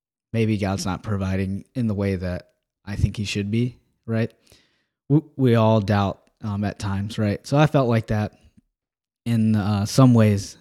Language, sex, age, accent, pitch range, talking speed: English, male, 10-29, American, 95-115 Hz, 170 wpm